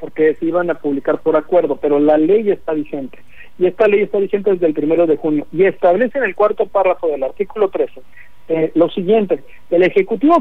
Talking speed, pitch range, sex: 210 wpm, 170-210 Hz, male